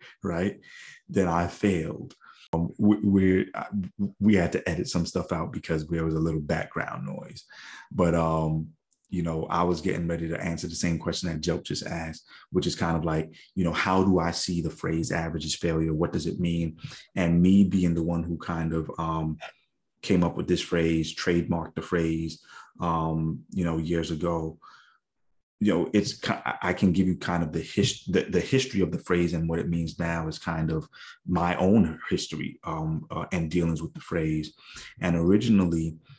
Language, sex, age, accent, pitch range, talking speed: English, male, 30-49, American, 80-90 Hz, 195 wpm